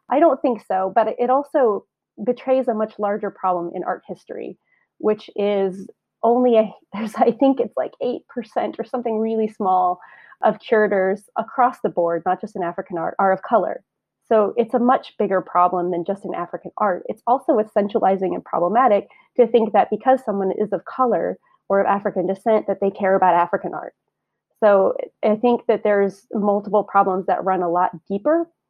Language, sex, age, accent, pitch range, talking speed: English, female, 30-49, American, 190-230 Hz, 185 wpm